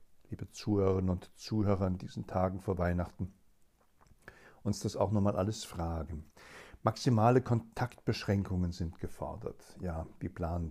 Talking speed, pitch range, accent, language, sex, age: 125 wpm, 85-115 Hz, German, German, male, 60-79